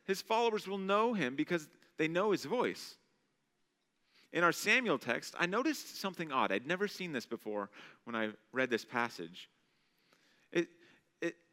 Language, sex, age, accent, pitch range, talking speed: English, male, 30-49, American, 125-200 Hz, 150 wpm